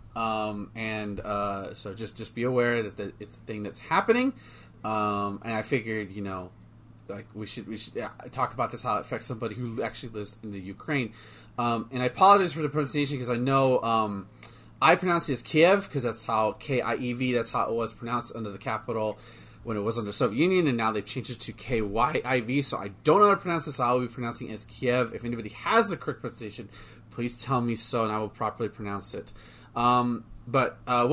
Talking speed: 235 wpm